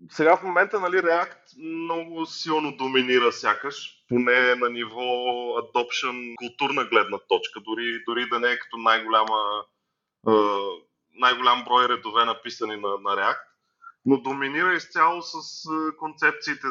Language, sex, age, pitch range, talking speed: Bulgarian, male, 30-49, 125-180 Hz, 125 wpm